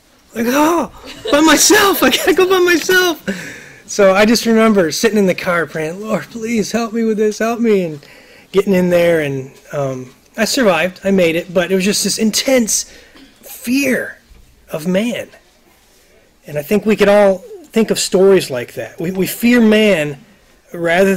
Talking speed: 175 wpm